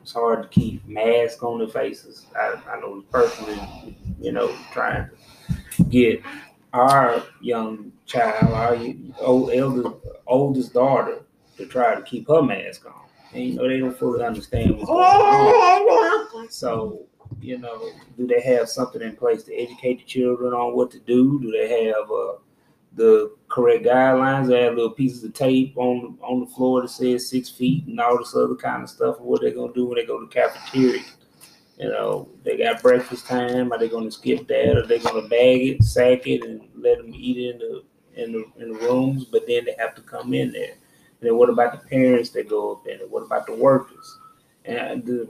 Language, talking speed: English, 205 wpm